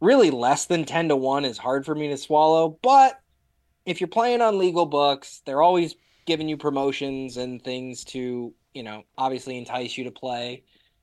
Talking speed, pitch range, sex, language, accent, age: 185 wpm, 115-155 Hz, male, English, American, 20-39